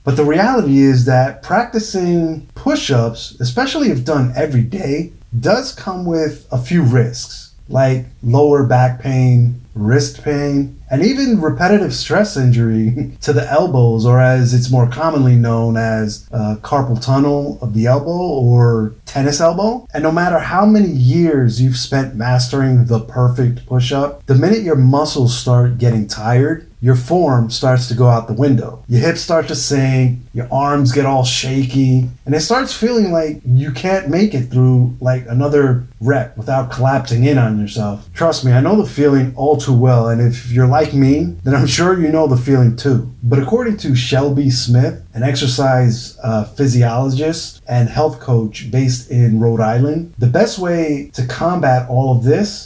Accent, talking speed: American, 170 wpm